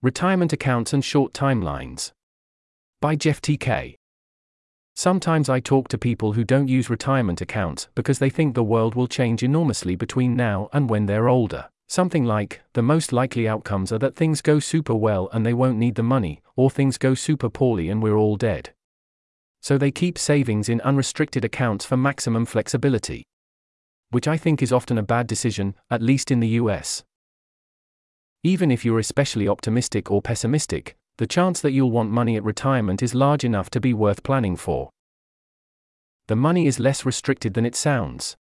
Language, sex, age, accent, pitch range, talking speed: English, male, 40-59, British, 110-135 Hz, 175 wpm